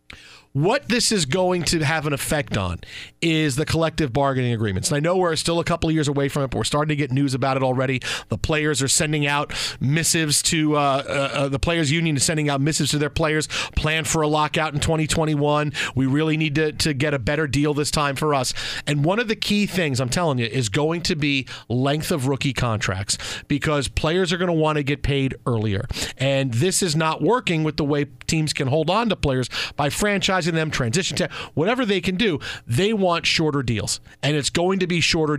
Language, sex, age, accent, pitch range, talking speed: English, male, 40-59, American, 135-175 Hz, 225 wpm